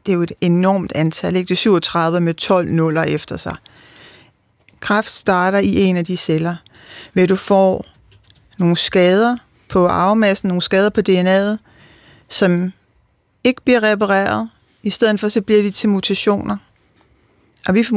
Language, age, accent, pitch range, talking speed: Danish, 40-59, native, 180-205 Hz, 155 wpm